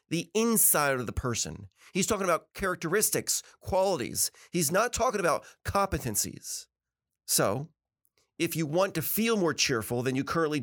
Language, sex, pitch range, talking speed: English, male, 130-190 Hz, 145 wpm